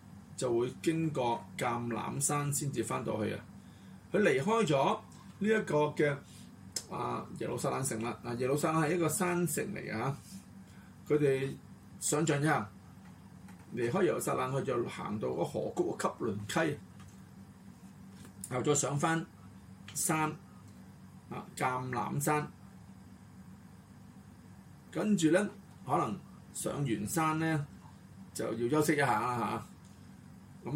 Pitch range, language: 115-160 Hz, Chinese